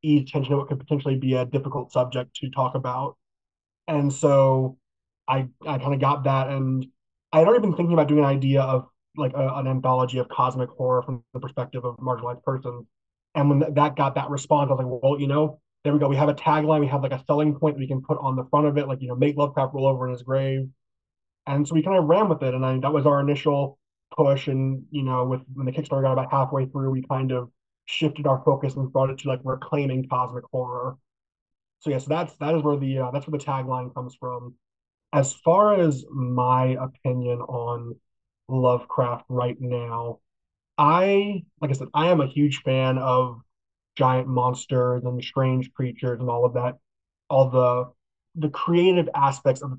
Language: English